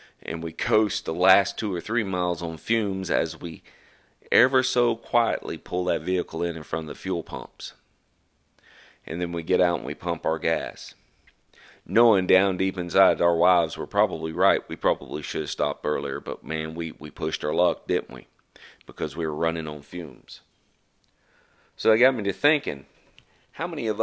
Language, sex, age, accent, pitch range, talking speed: English, male, 40-59, American, 85-105 Hz, 185 wpm